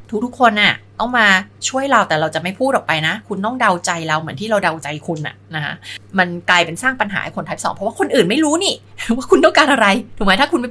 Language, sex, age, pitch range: Thai, female, 20-39, 160-235 Hz